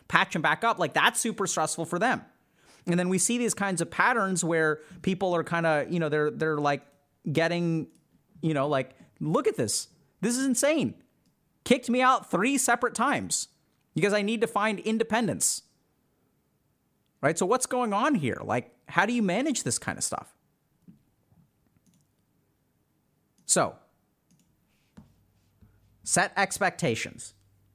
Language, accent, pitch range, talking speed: English, American, 135-195 Hz, 145 wpm